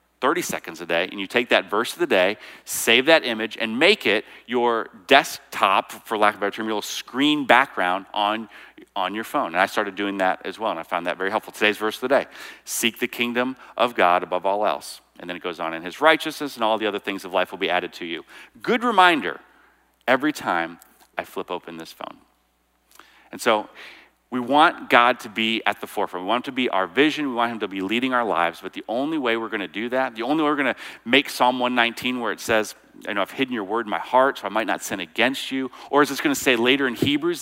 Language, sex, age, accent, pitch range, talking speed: English, male, 40-59, American, 105-140 Hz, 255 wpm